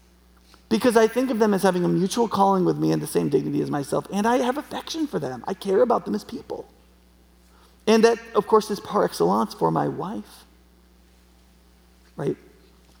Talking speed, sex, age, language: 190 wpm, male, 30-49, English